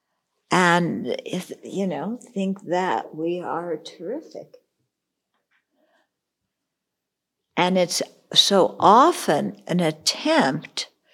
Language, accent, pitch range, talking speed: English, American, 175-210 Hz, 80 wpm